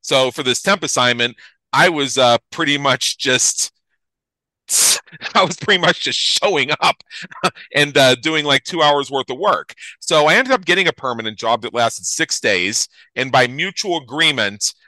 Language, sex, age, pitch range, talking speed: English, male, 40-59, 120-155 Hz, 170 wpm